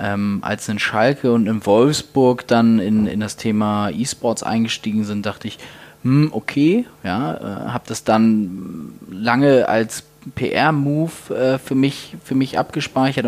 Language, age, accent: German, 20-39, German